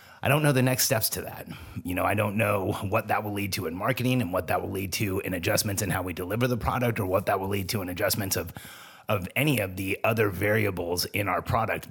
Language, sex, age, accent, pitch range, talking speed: English, male, 30-49, American, 95-115 Hz, 260 wpm